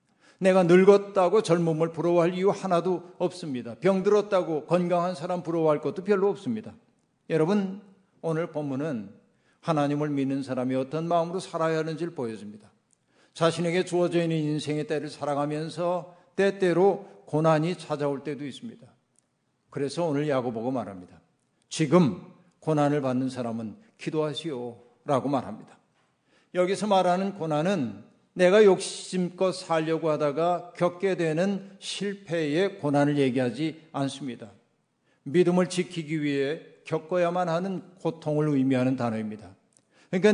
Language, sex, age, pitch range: Korean, male, 50-69, 150-185 Hz